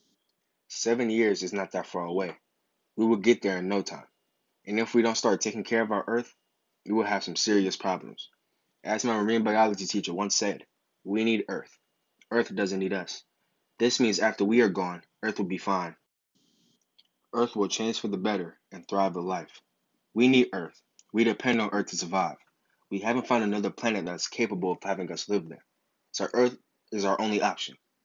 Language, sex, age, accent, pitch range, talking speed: English, male, 20-39, American, 100-115 Hz, 195 wpm